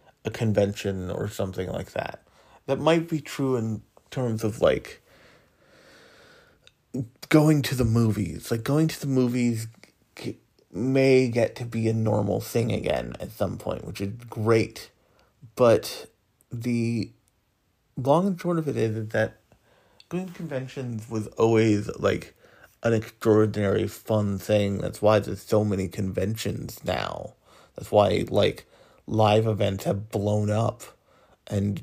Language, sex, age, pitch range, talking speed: English, male, 30-49, 105-125 Hz, 140 wpm